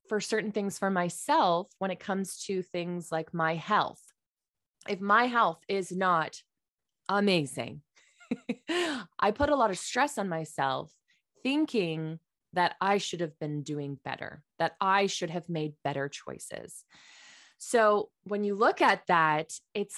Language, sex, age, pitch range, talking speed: English, female, 20-39, 160-205 Hz, 145 wpm